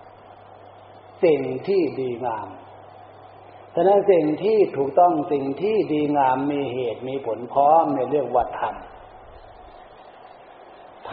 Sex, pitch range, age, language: male, 130-175 Hz, 60-79, Thai